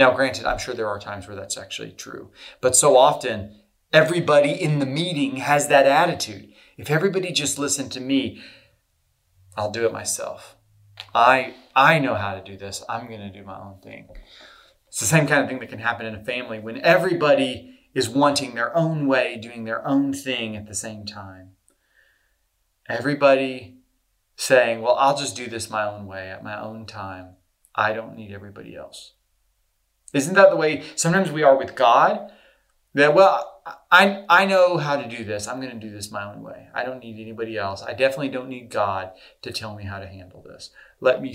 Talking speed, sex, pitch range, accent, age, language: 195 wpm, male, 105-145 Hz, American, 30-49, English